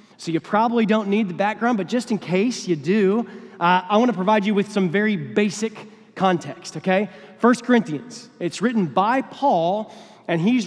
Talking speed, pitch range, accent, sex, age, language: 185 wpm, 195-240 Hz, American, male, 30-49, English